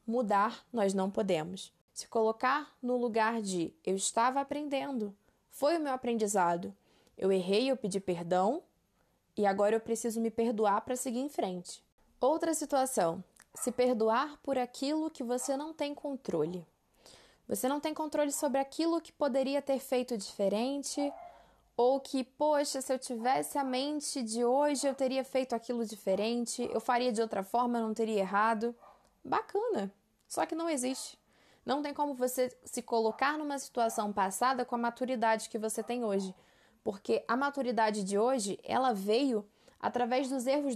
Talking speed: 160 wpm